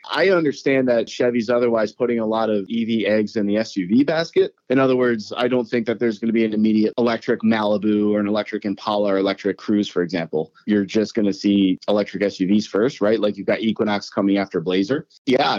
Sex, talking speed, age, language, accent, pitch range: male, 215 wpm, 30-49, English, American, 100-115 Hz